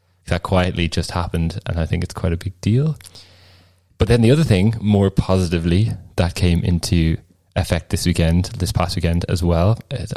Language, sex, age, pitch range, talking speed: English, male, 20-39, 90-105 Hz, 185 wpm